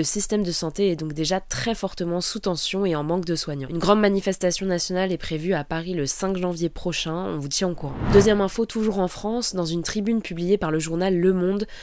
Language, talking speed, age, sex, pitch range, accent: French, 235 wpm, 20-39, female, 160-195 Hz, French